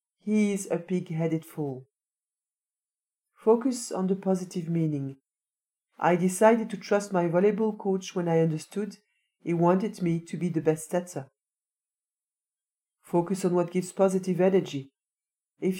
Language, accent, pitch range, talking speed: French, French, 160-195 Hz, 135 wpm